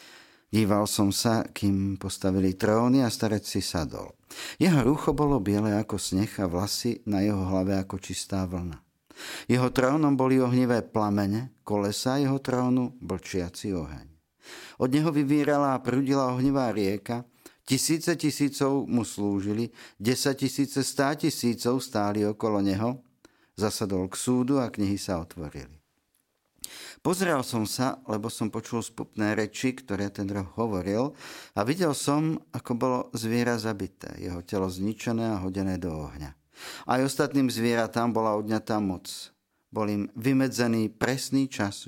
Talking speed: 140 wpm